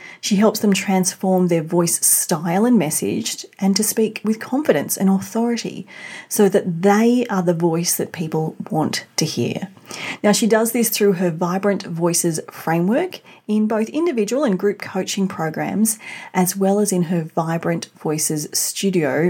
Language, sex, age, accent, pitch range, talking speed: English, female, 30-49, Australian, 170-205 Hz, 160 wpm